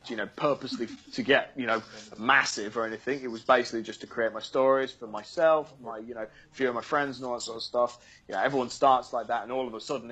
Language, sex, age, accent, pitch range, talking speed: English, male, 20-39, British, 115-135 Hz, 260 wpm